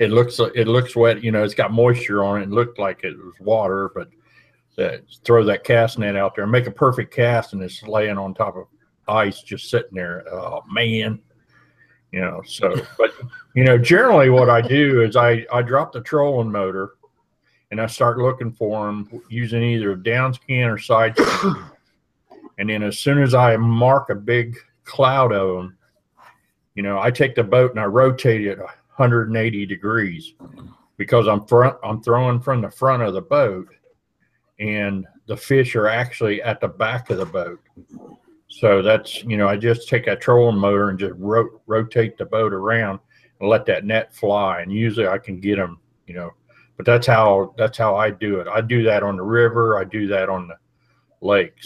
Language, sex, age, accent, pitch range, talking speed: English, male, 50-69, American, 100-120 Hz, 195 wpm